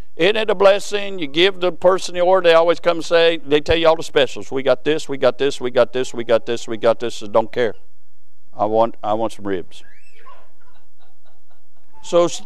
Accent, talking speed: American, 235 wpm